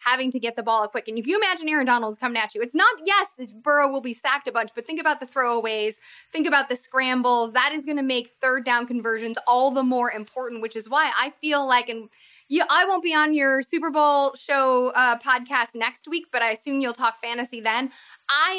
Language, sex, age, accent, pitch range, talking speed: English, female, 20-39, American, 230-275 Hz, 230 wpm